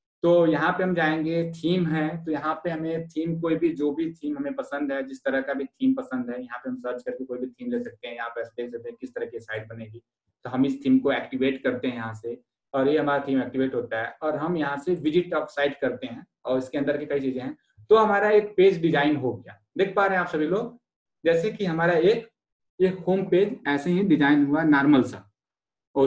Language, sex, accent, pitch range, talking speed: Hindi, male, native, 135-185 Hz, 245 wpm